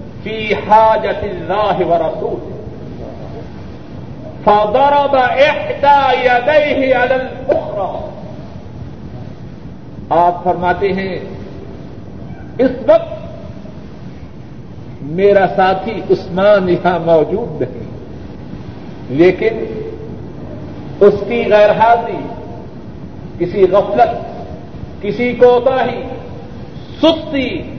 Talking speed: 65 wpm